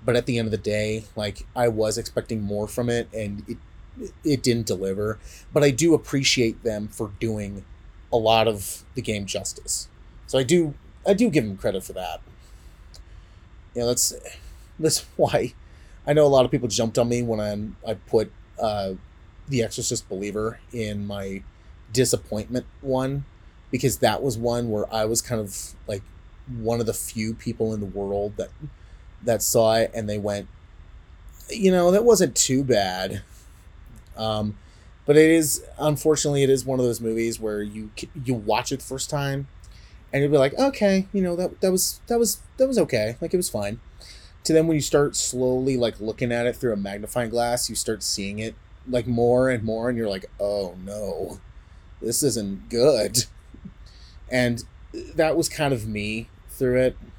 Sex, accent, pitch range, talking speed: male, American, 100-130 Hz, 185 wpm